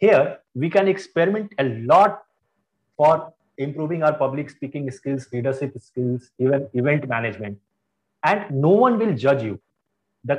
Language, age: English, 30-49